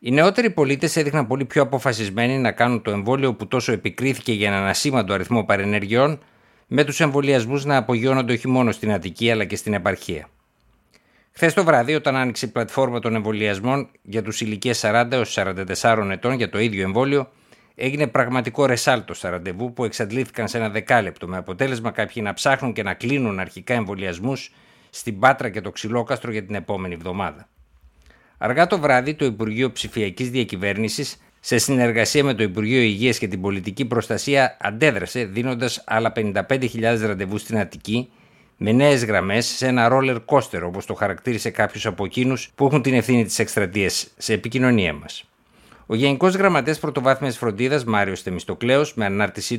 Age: 60-79